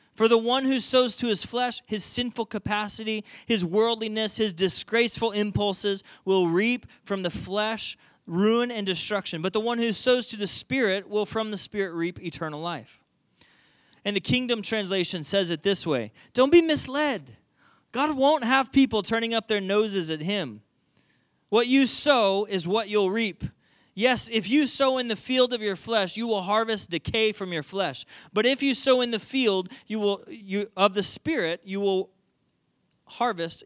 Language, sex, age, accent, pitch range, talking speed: English, male, 20-39, American, 175-225 Hz, 175 wpm